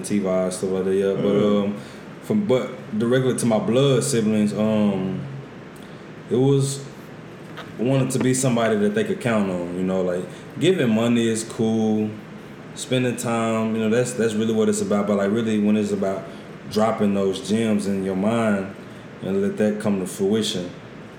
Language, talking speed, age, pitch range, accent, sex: English, 175 wpm, 20-39, 95-125 Hz, American, male